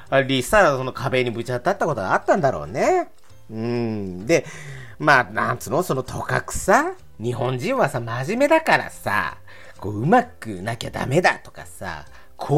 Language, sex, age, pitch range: Japanese, male, 40-59, 125-205 Hz